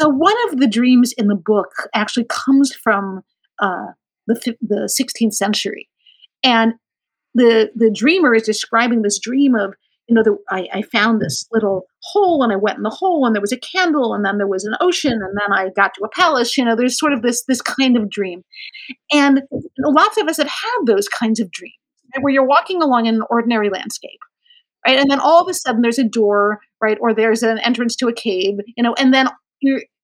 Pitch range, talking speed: 215-285 Hz, 225 wpm